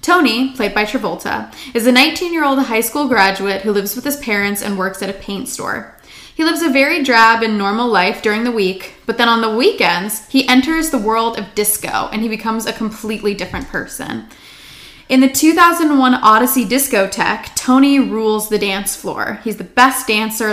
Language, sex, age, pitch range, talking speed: English, female, 20-39, 210-255 Hz, 185 wpm